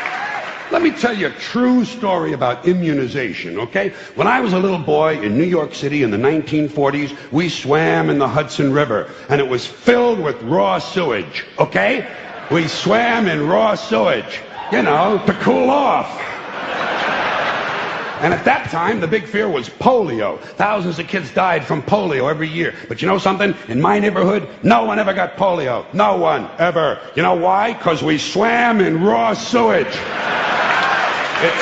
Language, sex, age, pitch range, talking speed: English, male, 60-79, 155-215 Hz, 170 wpm